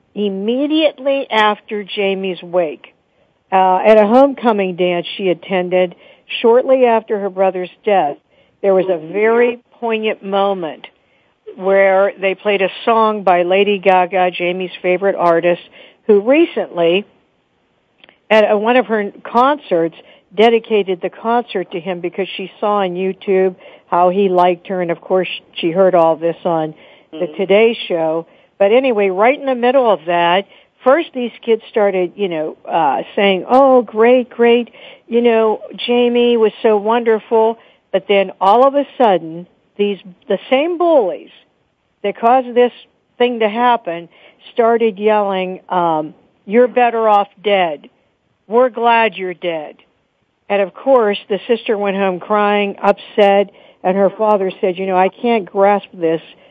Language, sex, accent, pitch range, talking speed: English, female, American, 185-230 Hz, 145 wpm